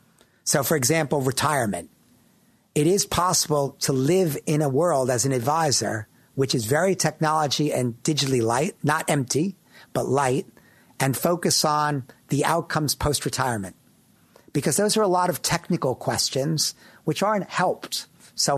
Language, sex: English, male